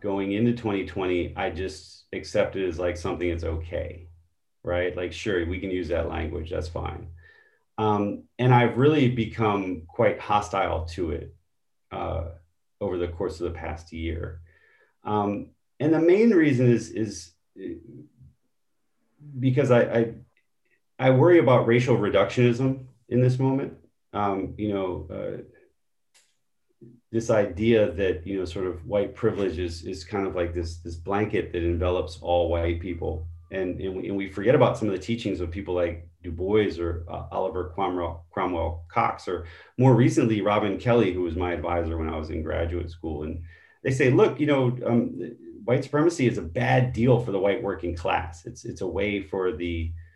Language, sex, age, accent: English, male, 30-49, American